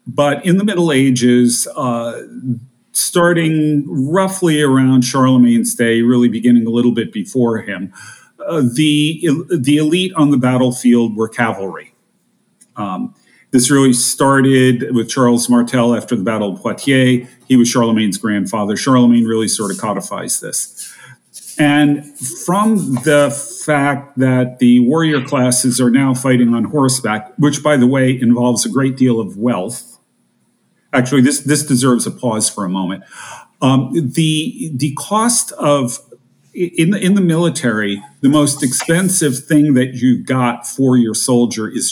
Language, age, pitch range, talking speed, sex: English, 50-69, 120-145 Hz, 145 wpm, male